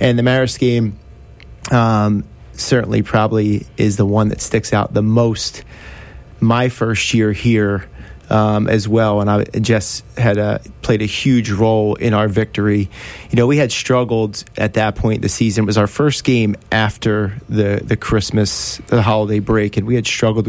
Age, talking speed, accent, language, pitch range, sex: 30-49, 175 wpm, American, English, 105-115 Hz, male